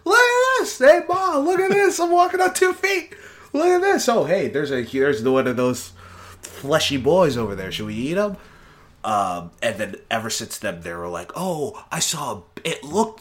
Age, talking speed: 30-49, 215 wpm